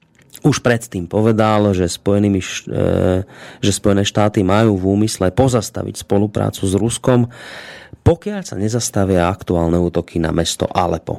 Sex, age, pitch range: male, 30-49, 95-125 Hz